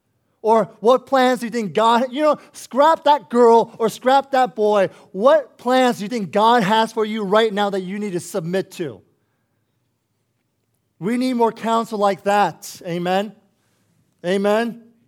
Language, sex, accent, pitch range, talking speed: English, male, American, 185-230 Hz, 165 wpm